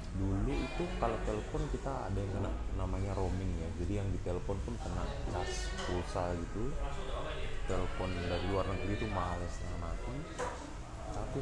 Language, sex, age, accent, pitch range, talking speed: Indonesian, male, 30-49, native, 90-105 Hz, 135 wpm